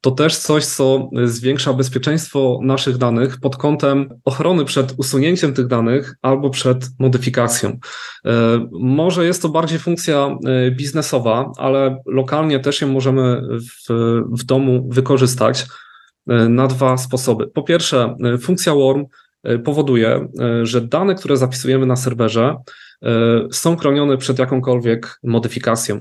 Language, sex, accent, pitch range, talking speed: Polish, male, native, 120-140 Hz, 120 wpm